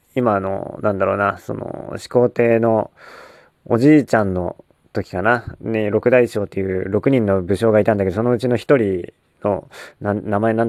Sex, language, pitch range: male, Japanese, 100-125 Hz